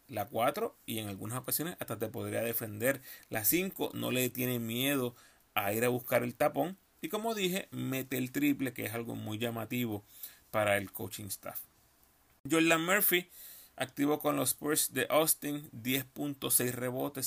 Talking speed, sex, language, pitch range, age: 165 wpm, male, Spanish, 115-145 Hz, 30-49